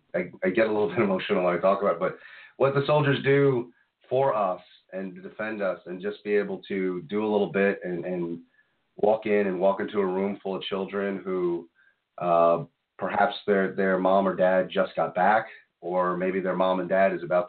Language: English